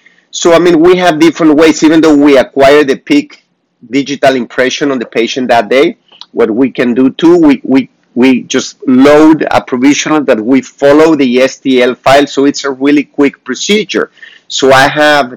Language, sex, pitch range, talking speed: English, male, 120-145 Hz, 185 wpm